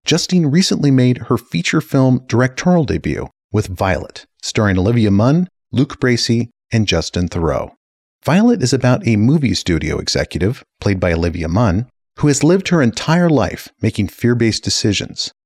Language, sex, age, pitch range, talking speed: English, male, 40-59, 95-140 Hz, 150 wpm